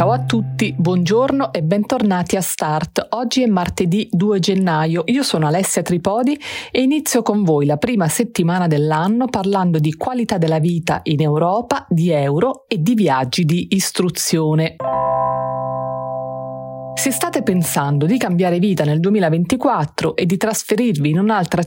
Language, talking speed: Italian, 145 wpm